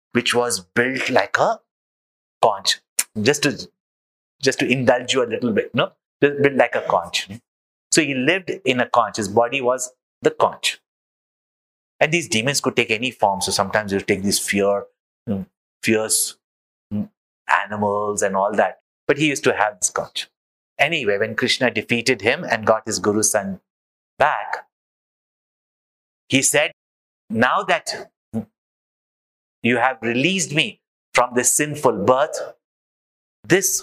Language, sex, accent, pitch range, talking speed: English, male, Indian, 85-135 Hz, 145 wpm